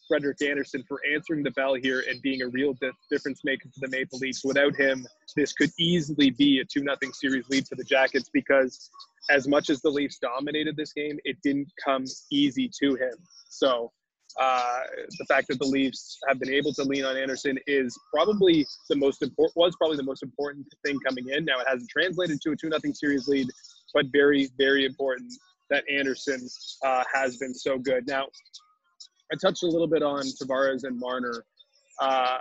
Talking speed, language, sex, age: 195 wpm, English, male, 20-39